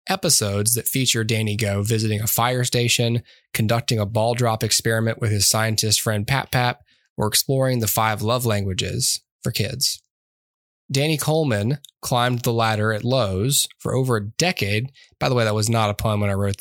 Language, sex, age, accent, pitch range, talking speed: English, male, 10-29, American, 110-130 Hz, 180 wpm